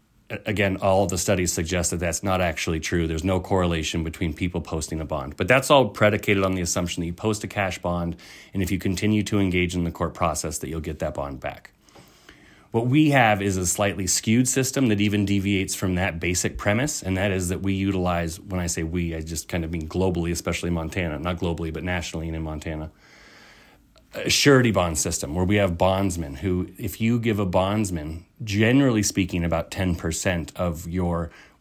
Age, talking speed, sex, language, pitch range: 30-49, 205 wpm, male, English, 85-100 Hz